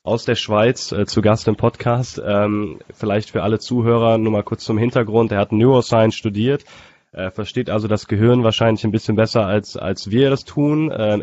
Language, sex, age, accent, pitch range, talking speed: English, male, 10-29, German, 100-115 Hz, 200 wpm